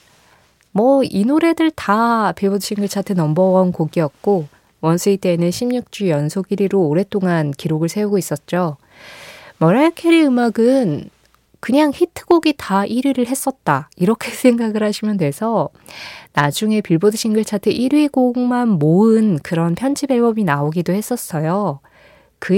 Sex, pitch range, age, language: female, 165-220 Hz, 20-39, Korean